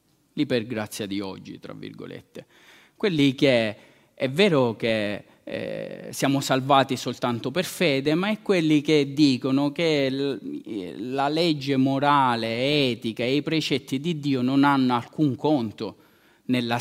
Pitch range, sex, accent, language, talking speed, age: 120-160 Hz, male, native, Italian, 130 wpm, 30-49